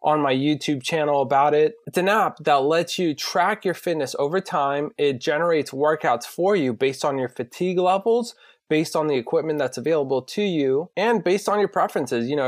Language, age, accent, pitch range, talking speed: English, 20-39, American, 140-185 Hz, 200 wpm